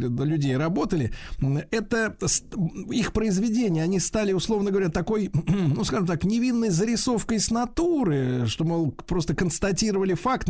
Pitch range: 120-190 Hz